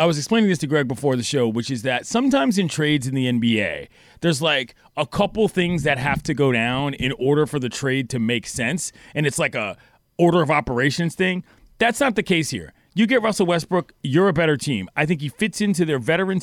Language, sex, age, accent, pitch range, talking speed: English, male, 30-49, American, 140-190 Hz, 235 wpm